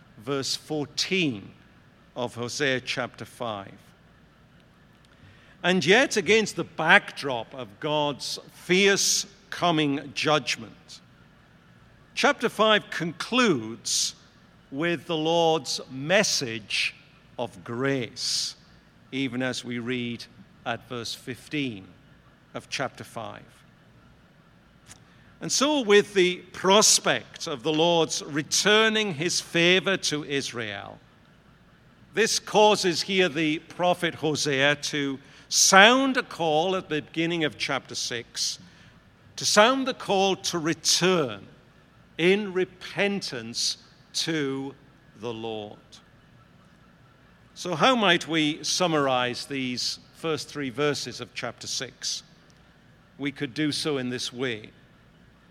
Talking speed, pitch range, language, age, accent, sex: 100 wpm, 130-180 Hz, English, 50-69, British, male